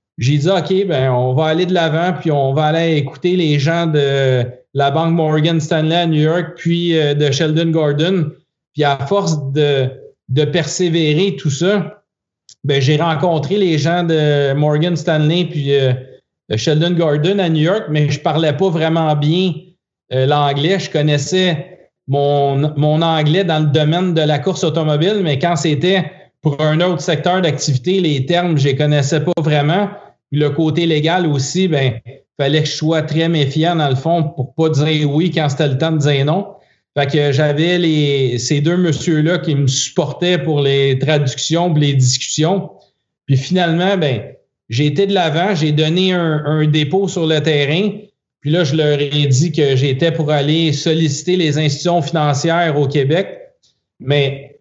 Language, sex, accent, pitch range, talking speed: French, male, Canadian, 145-175 Hz, 175 wpm